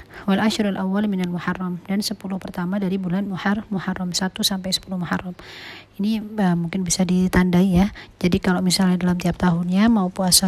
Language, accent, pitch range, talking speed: Indonesian, native, 180-195 Hz, 155 wpm